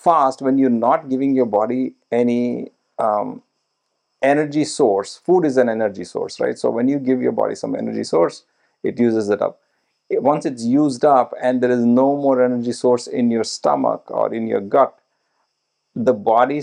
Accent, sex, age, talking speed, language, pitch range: Indian, male, 50-69, 180 wpm, English, 120-160 Hz